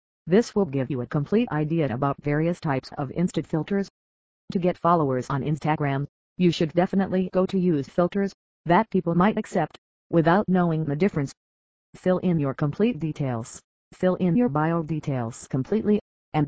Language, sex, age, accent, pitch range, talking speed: English, female, 40-59, American, 140-185 Hz, 165 wpm